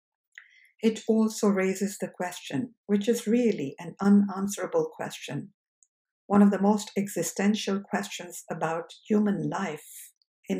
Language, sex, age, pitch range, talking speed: English, female, 60-79, 190-230 Hz, 120 wpm